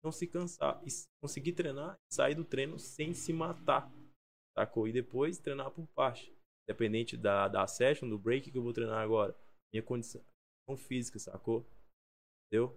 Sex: male